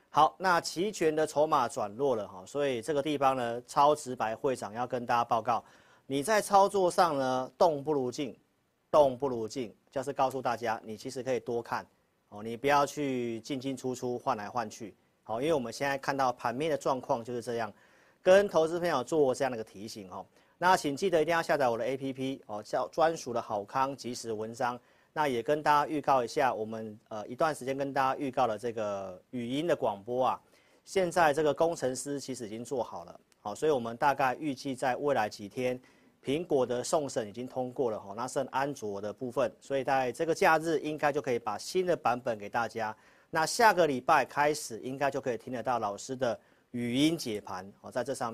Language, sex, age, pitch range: Chinese, male, 40-59, 115-150 Hz